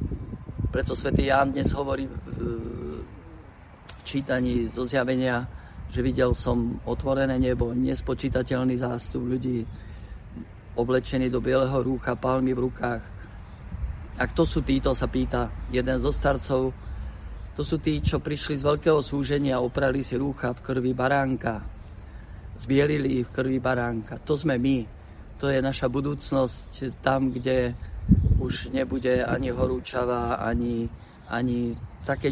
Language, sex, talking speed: Slovak, male, 125 wpm